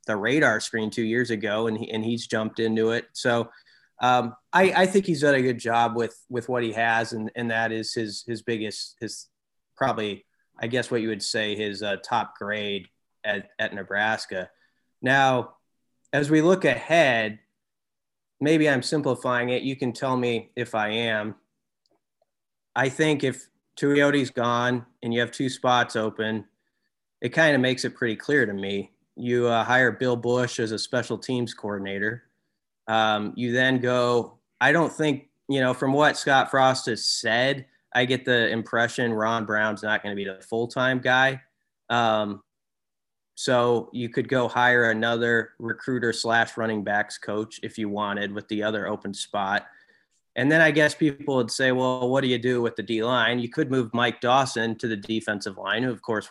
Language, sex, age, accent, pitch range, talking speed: English, male, 30-49, American, 110-130 Hz, 185 wpm